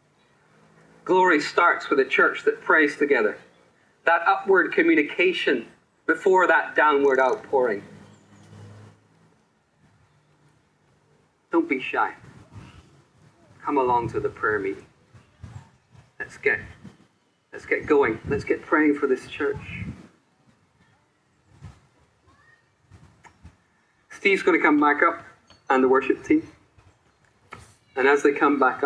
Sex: male